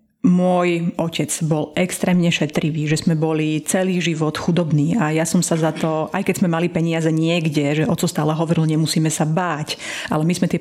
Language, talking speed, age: Slovak, 190 wpm, 30-49